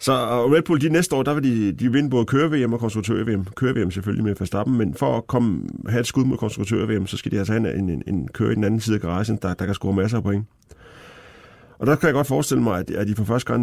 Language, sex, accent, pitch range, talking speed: Danish, male, native, 95-115 Hz, 280 wpm